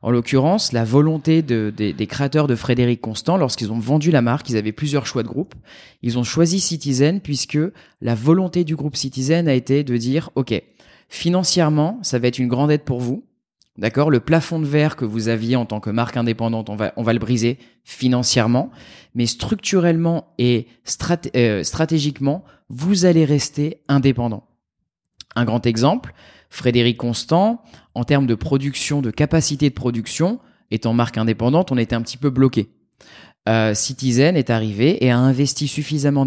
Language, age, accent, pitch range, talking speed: French, 20-39, French, 120-150 Hz, 165 wpm